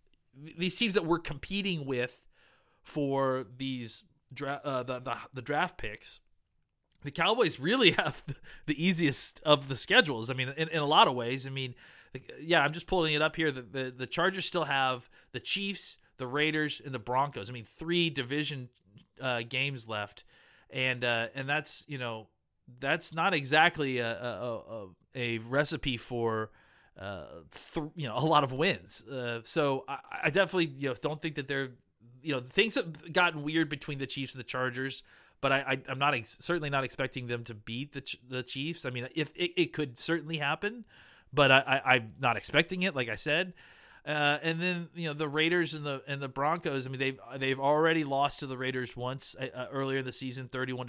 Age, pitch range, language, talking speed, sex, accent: 30-49, 125-155 Hz, English, 200 wpm, male, American